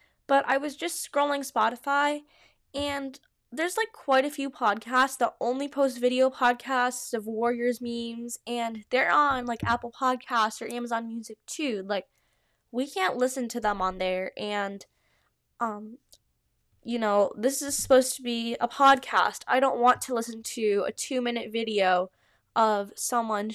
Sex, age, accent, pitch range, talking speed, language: female, 10-29, American, 230-265 Hz, 155 wpm, English